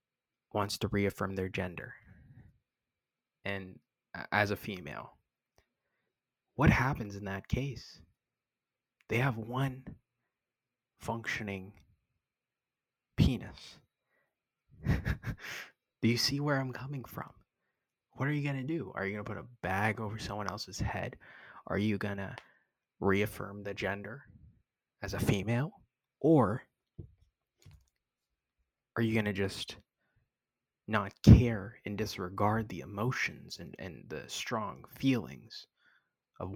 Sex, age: male, 20-39